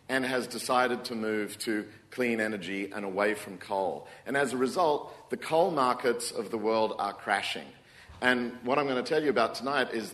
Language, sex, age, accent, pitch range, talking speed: English, male, 50-69, Australian, 100-125 Hz, 200 wpm